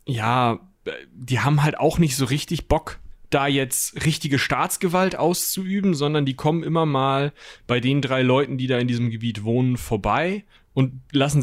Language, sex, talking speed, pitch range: German, male, 170 wpm, 120-150 Hz